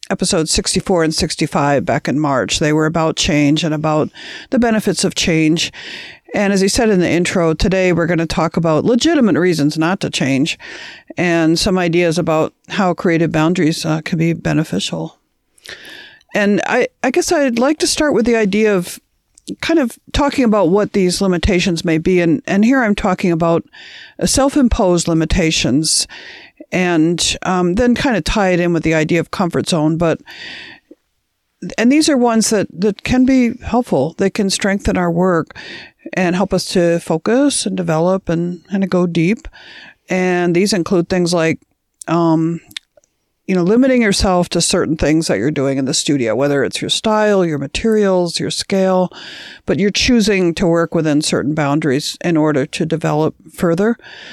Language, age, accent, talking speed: English, 50-69, American, 175 wpm